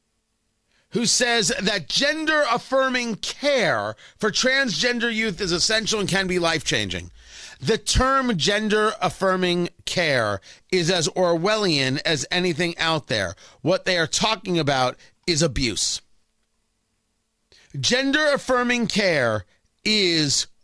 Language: English